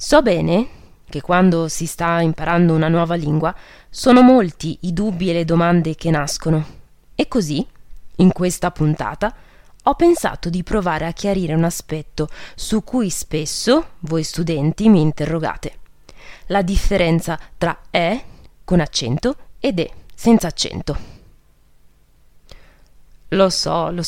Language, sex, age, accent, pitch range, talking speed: Italian, female, 20-39, native, 160-205 Hz, 130 wpm